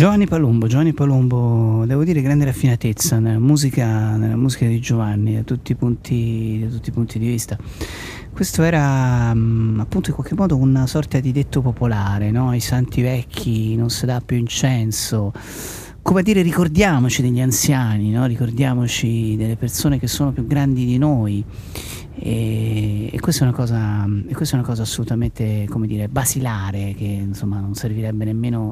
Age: 30-49